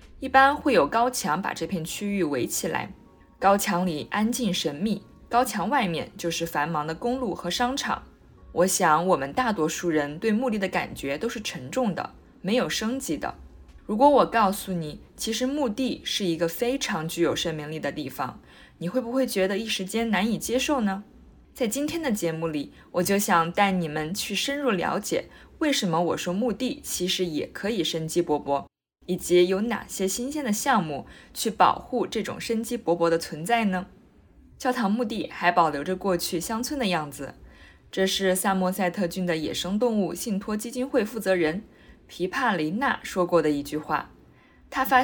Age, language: 20-39, Chinese